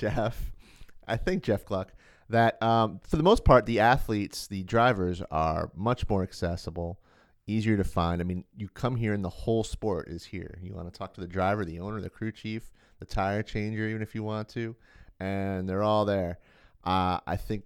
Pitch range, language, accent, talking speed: 90-110 Hz, English, American, 205 wpm